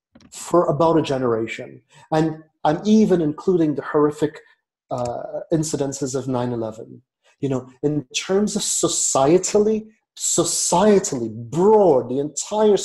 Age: 30-49